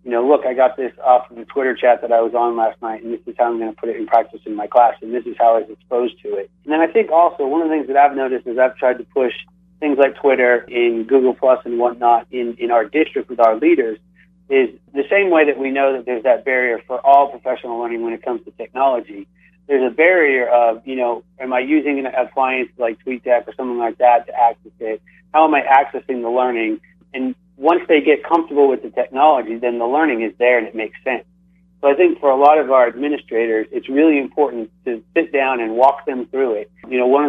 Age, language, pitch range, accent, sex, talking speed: 30-49, English, 120-150 Hz, American, male, 255 wpm